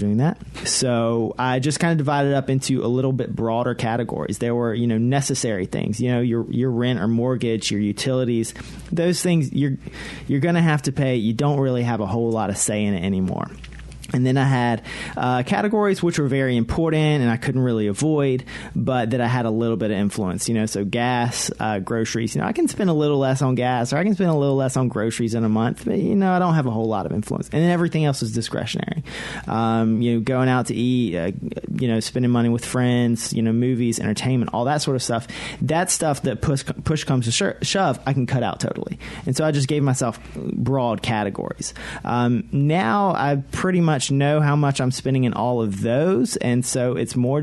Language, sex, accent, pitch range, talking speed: English, male, American, 115-140 Hz, 235 wpm